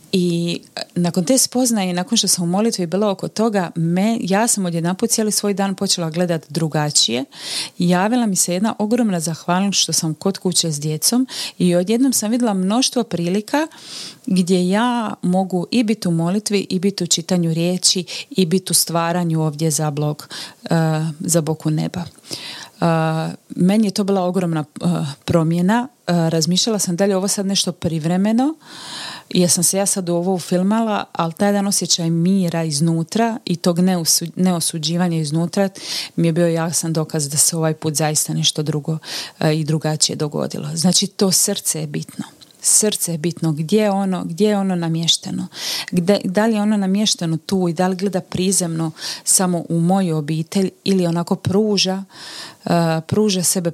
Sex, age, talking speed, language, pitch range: female, 30-49, 165 wpm, Croatian, 165-195 Hz